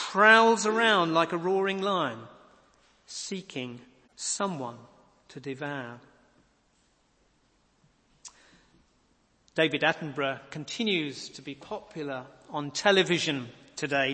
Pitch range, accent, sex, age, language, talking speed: 140-190 Hz, British, male, 40-59, English, 80 wpm